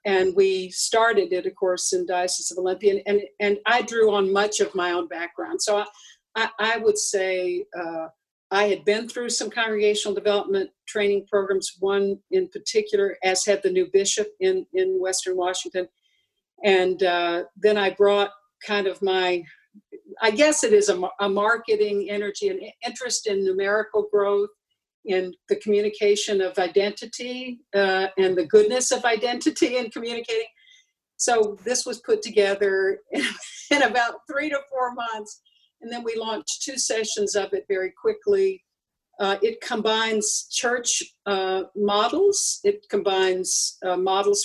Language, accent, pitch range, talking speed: English, American, 195-245 Hz, 155 wpm